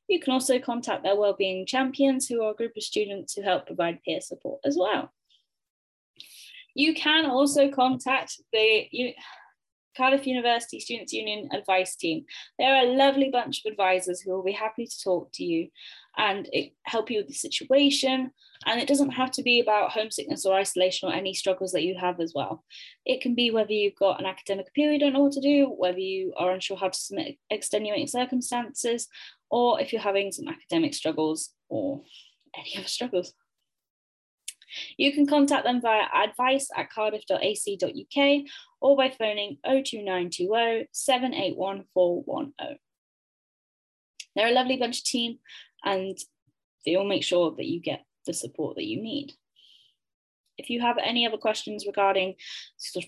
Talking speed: 165 wpm